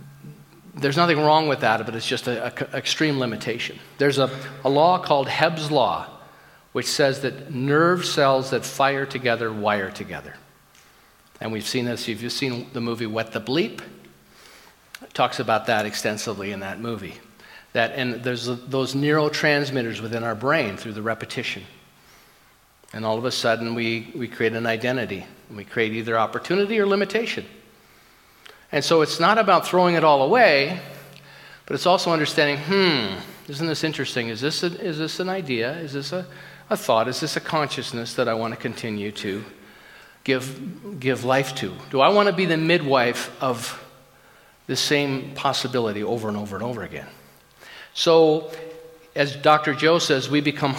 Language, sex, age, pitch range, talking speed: English, male, 50-69, 115-155 Hz, 170 wpm